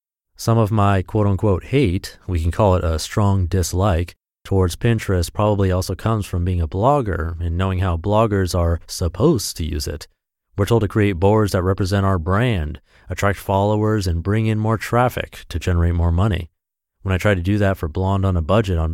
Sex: male